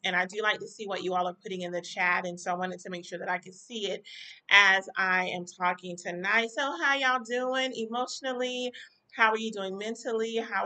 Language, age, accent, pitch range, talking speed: English, 30-49, American, 185-225 Hz, 235 wpm